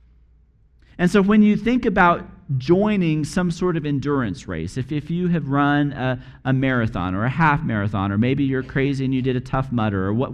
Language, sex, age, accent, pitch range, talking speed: English, male, 40-59, American, 120-160 Hz, 210 wpm